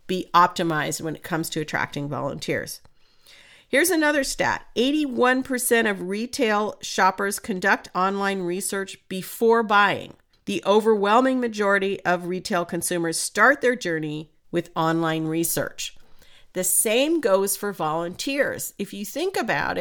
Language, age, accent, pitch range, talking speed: English, 50-69, American, 170-235 Hz, 125 wpm